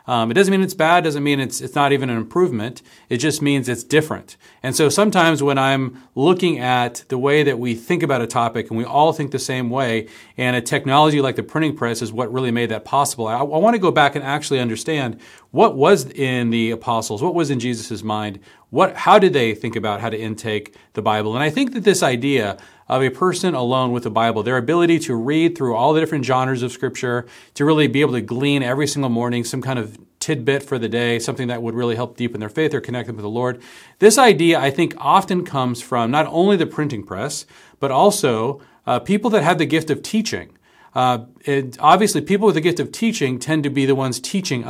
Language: English